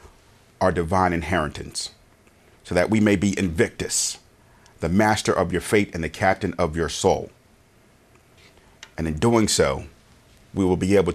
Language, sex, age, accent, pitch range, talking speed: English, male, 40-59, American, 90-110 Hz, 150 wpm